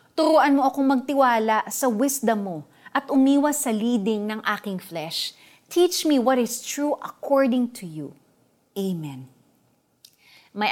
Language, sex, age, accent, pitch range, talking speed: Filipino, female, 30-49, native, 185-265 Hz, 135 wpm